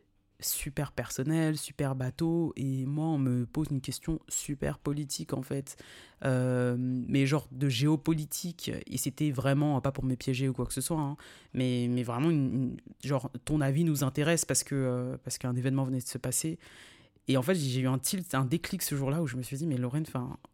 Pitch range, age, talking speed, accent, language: 125-150 Hz, 20-39, 215 wpm, French, French